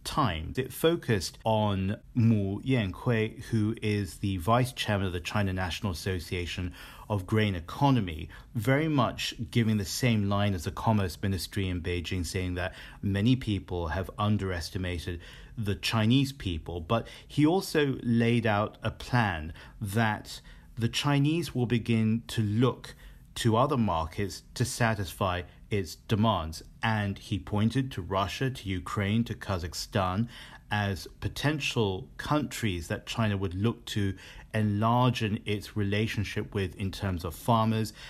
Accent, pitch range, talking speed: British, 95-115 Hz, 135 wpm